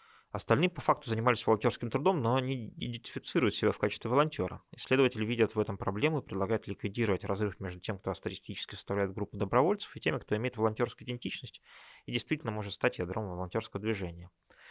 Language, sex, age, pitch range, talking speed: Russian, male, 20-39, 95-115 Hz, 170 wpm